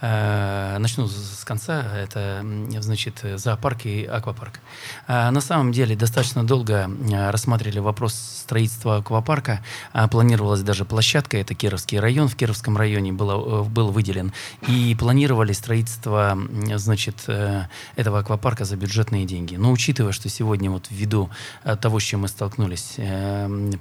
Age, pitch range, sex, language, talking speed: 20-39, 100-115 Hz, male, Russian, 125 wpm